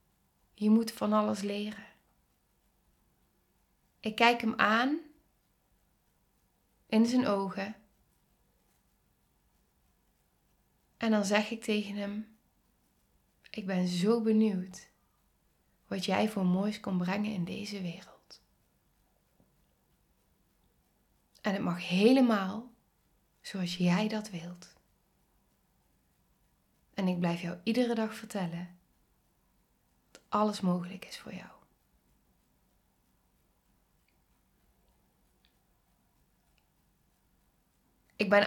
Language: Dutch